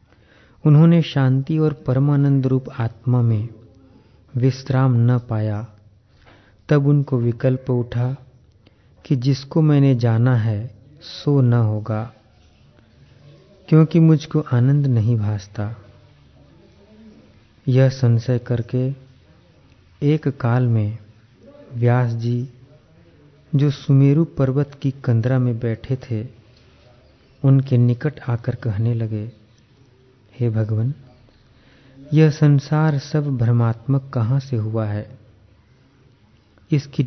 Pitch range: 110-135 Hz